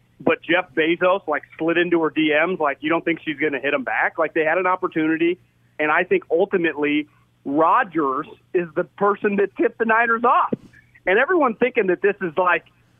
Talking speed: 200 wpm